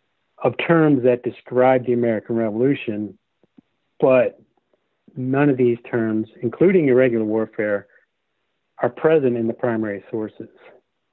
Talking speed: 115 wpm